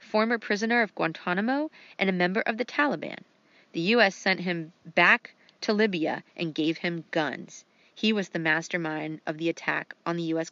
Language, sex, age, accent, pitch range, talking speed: English, female, 30-49, American, 170-230 Hz, 175 wpm